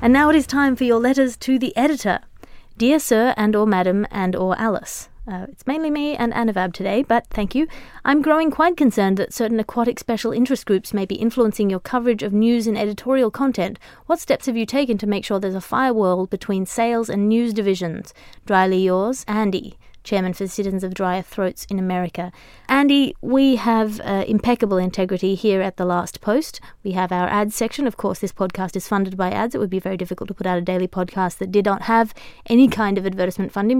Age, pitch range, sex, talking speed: 30-49, 190-235 Hz, female, 215 wpm